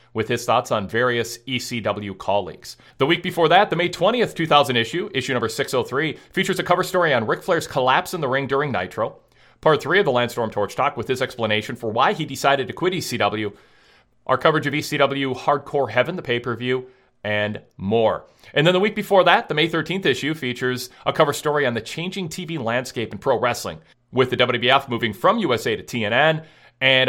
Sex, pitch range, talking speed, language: male, 115-150 Hz, 200 wpm, English